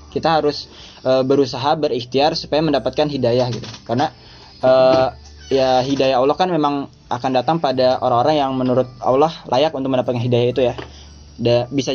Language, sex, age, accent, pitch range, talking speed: Indonesian, male, 20-39, native, 120-145 Hz, 155 wpm